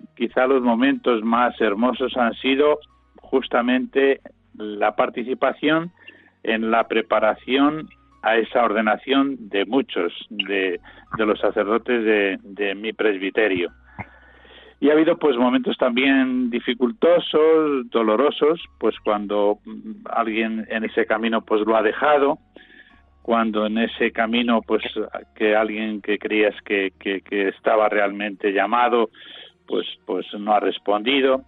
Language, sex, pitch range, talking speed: Spanish, male, 105-135 Hz, 120 wpm